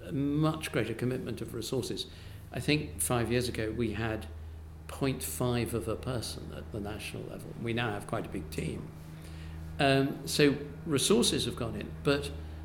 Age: 60-79